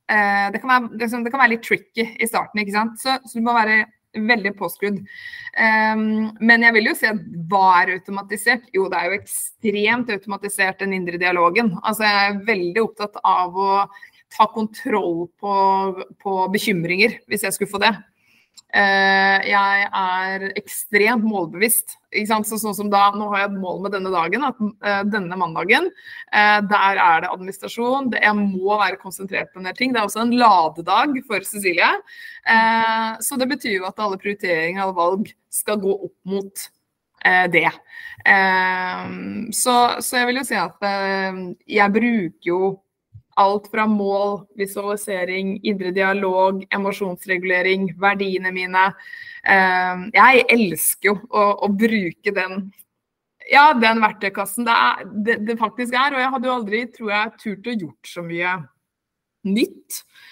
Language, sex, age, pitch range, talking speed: English, female, 20-39, 190-225 Hz, 155 wpm